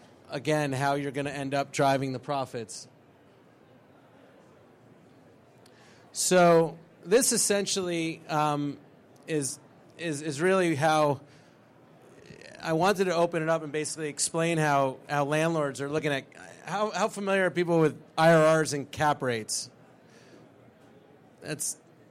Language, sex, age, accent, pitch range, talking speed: English, male, 30-49, American, 145-170 Hz, 120 wpm